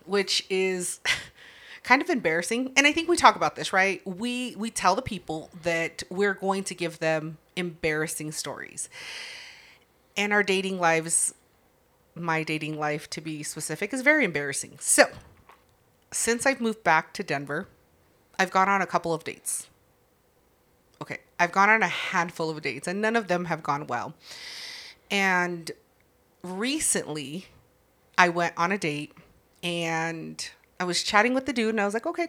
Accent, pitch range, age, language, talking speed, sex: American, 165-230 Hz, 30-49, English, 160 wpm, female